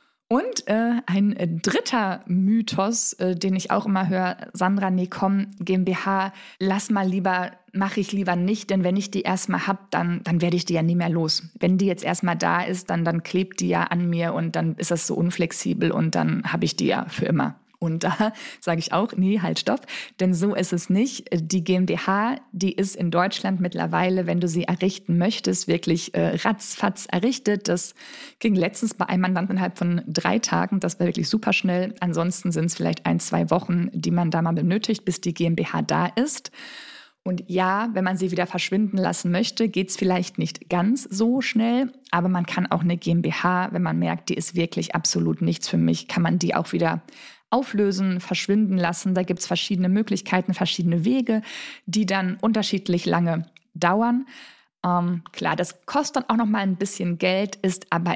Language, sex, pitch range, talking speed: German, female, 175-200 Hz, 195 wpm